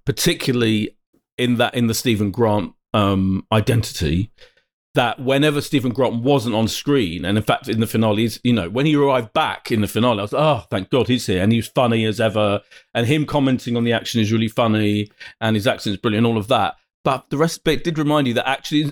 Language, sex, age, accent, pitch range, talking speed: English, male, 40-59, British, 110-145 Hz, 235 wpm